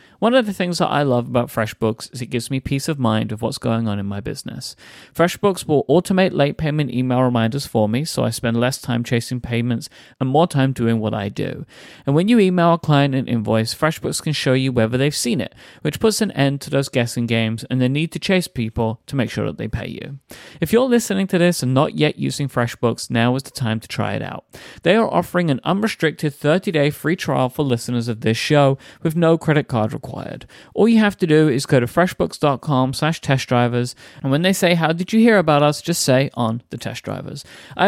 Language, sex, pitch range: English, male, 120-155 Hz